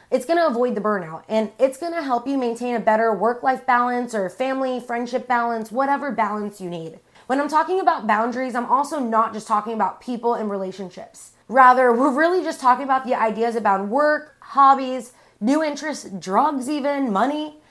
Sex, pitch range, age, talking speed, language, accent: female, 215-275 Hz, 20-39, 185 wpm, English, American